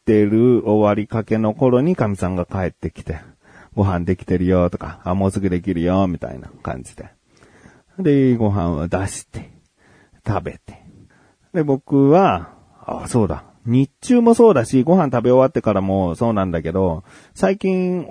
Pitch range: 90-135 Hz